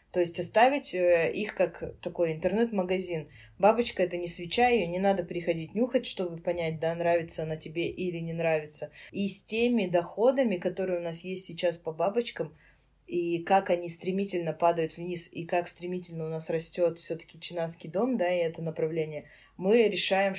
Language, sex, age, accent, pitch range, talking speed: Russian, female, 20-39, native, 165-185 Hz, 170 wpm